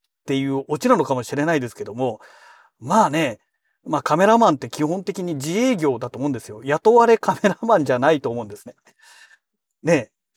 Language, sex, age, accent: Japanese, male, 40-59, native